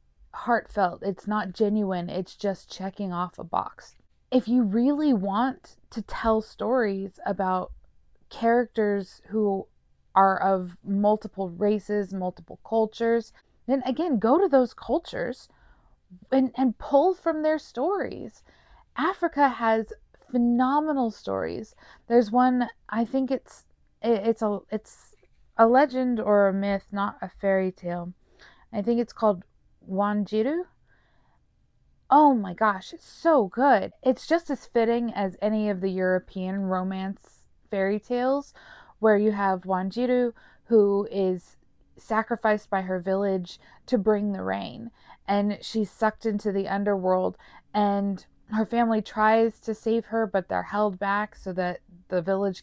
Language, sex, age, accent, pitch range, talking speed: English, female, 20-39, American, 190-235 Hz, 135 wpm